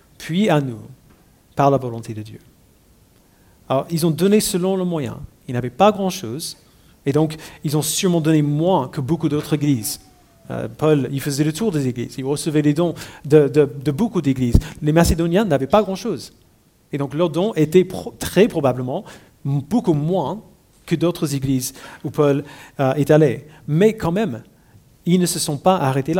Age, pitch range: 40-59, 135-185 Hz